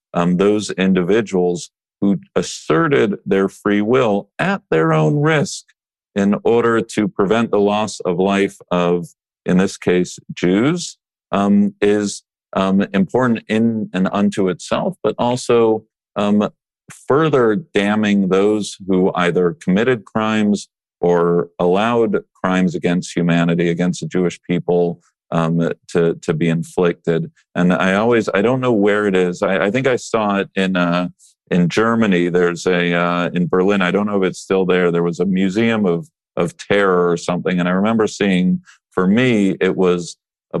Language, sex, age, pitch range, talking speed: English, male, 40-59, 90-100 Hz, 155 wpm